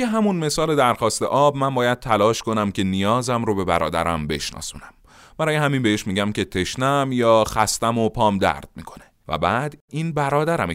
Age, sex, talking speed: 30-49, male, 165 wpm